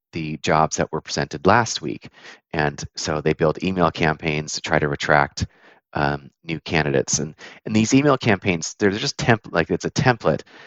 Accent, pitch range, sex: American, 80-95 Hz, male